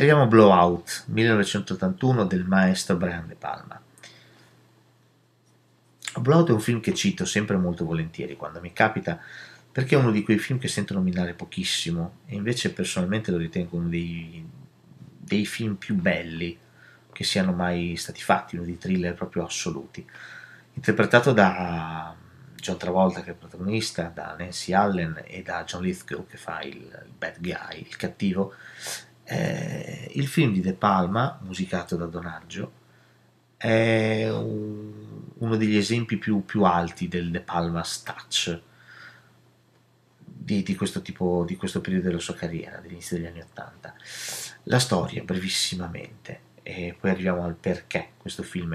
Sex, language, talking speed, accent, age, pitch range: male, Italian, 145 wpm, native, 30-49, 85-110 Hz